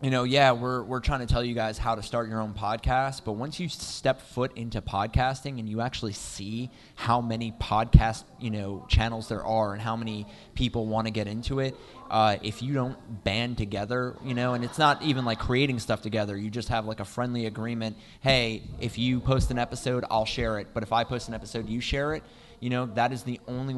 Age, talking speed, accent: 20-39, 230 wpm, American